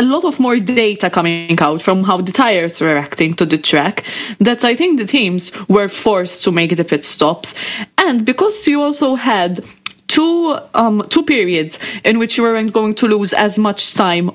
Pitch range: 180-235 Hz